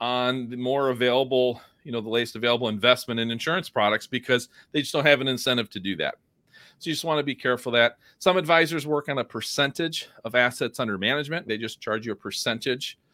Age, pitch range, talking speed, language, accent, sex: 40-59, 115-135 Hz, 215 wpm, English, American, male